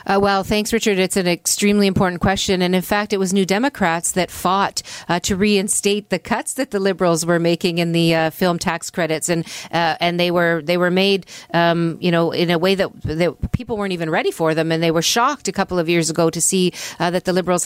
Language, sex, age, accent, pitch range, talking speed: English, female, 40-59, American, 165-200 Hz, 240 wpm